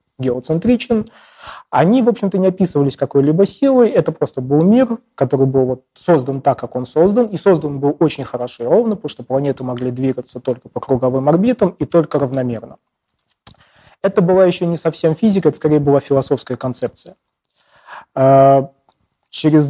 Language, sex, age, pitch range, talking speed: Russian, male, 20-39, 130-160 Hz, 150 wpm